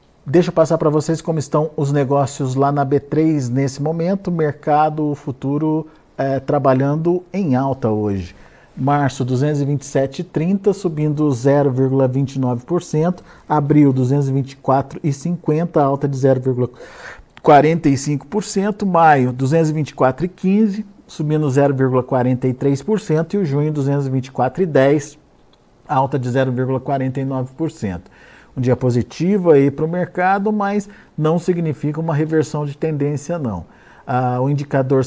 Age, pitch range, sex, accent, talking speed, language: 50-69, 130-165 Hz, male, Brazilian, 100 wpm, Portuguese